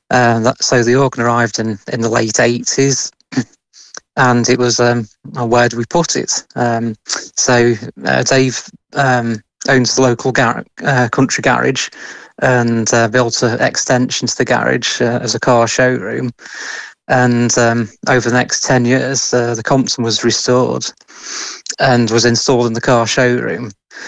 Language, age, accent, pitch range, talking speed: English, 30-49, British, 115-130 Hz, 155 wpm